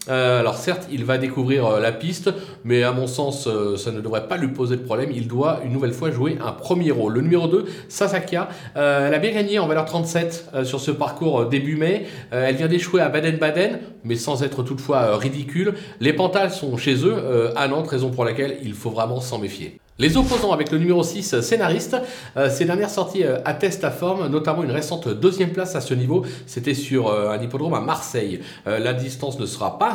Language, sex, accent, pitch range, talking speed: French, male, French, 130-180 Hz, 205 wpm